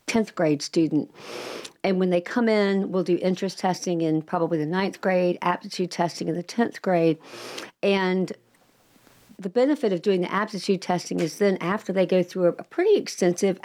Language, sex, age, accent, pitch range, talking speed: English, female, 50-69, American, 170-200 Hz, 175 wpm